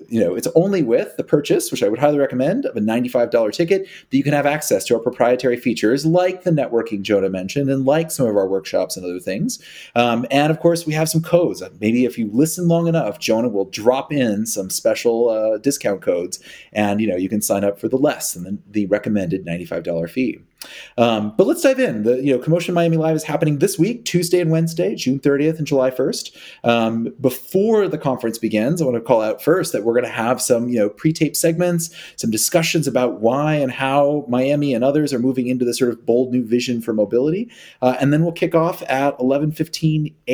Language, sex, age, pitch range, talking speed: English, male, 30-49, 115-160 Hz, 225 wpm